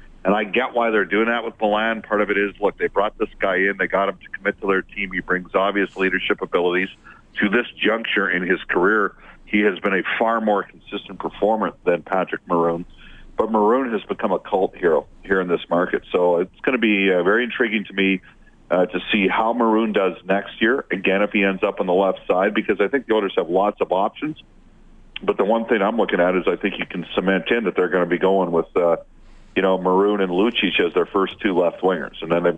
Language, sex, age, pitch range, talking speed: English, male, 40-59, 90-105 Hz, 240 wpm